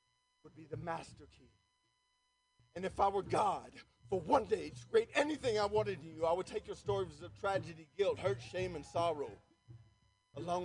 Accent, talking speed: American, 185 wpm